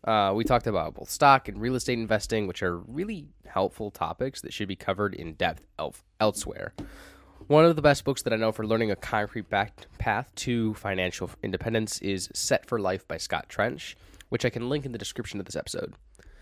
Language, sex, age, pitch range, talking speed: English, male, 10-29, 100-125 Hz, 205 wpm